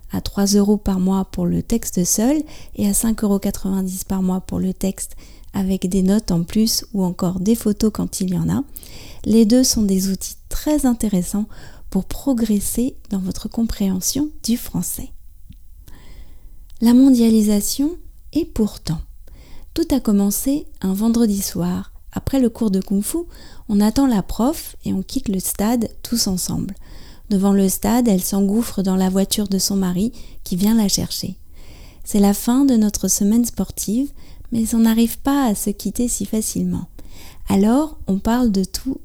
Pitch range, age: 190-235 Hz, 30-49